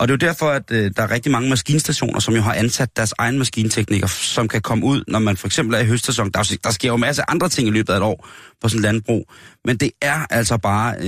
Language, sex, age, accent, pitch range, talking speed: Danish, male, 30-49, native, 105-125 Hz, 265 wpm